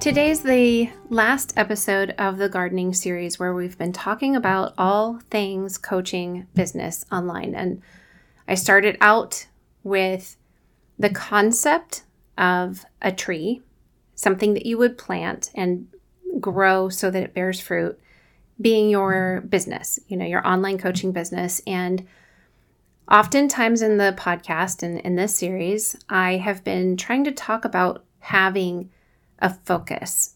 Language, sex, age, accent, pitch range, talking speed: English, female, 30-49, American, 180-210 Hz, 135 wpm